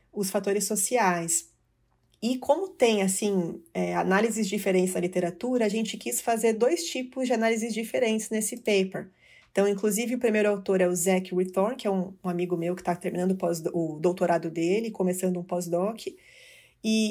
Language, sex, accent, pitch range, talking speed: Portuguese, female, Brazilian, 185-220 Hz, 170 wpm